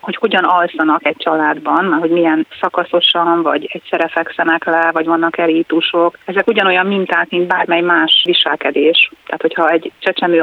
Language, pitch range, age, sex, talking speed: Hungarian, 160-185 Hz, 30-49, female, 150 wpm